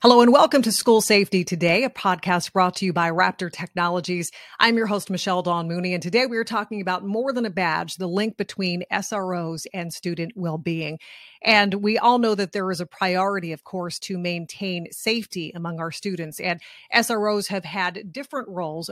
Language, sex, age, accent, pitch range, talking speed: English, female, 30-49, American, 175-205 Hz, 190 wpm